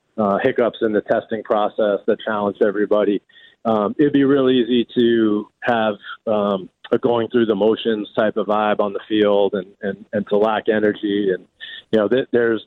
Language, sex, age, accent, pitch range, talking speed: English, male, 40-59, American, 100-115 Hz, 185 wpm